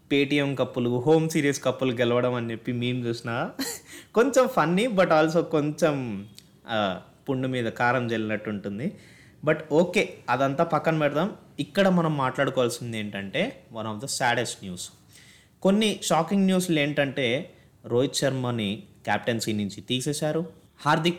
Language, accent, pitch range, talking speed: Telugu, native, 125-165 Hz, 125 wpm